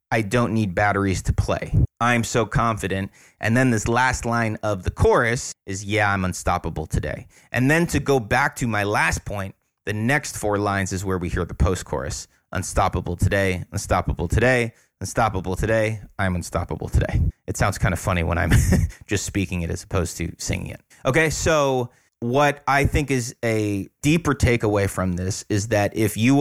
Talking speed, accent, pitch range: 185 wpm, American, 95-125 Hz